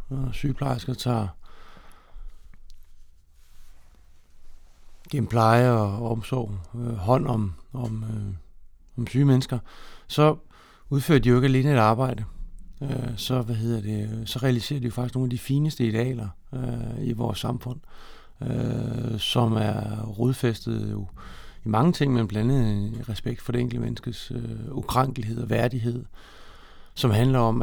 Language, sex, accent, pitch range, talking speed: Danish, male, native, 105-125 Hz, 145 wpm